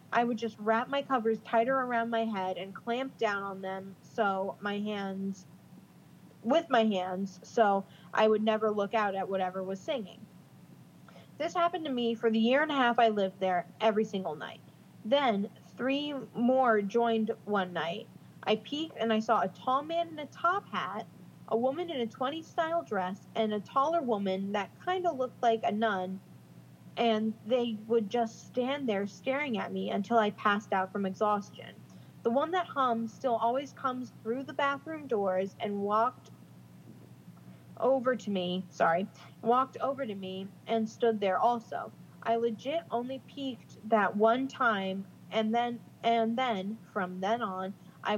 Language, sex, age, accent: English, female, 20-39, American